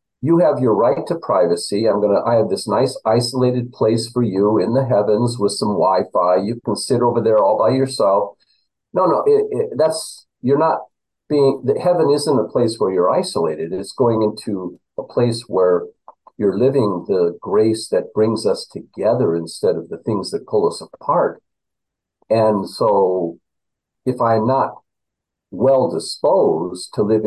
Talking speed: 165 wpm